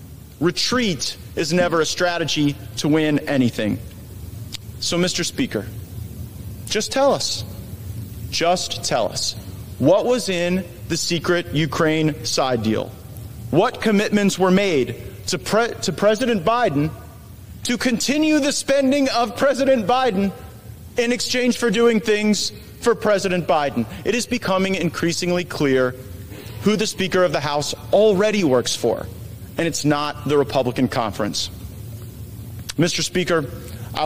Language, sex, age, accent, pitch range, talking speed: English, male, 40-59, American, 110-180 Hz, 125 wpm